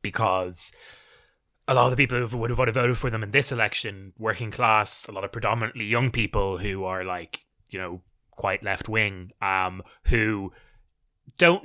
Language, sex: English, male